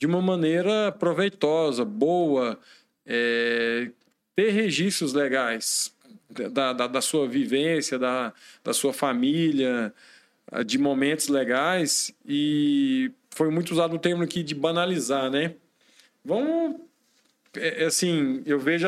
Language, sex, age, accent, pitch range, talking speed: Portuguese, male, 40-59, Brazilian, 145-230 Hz, 120 wpm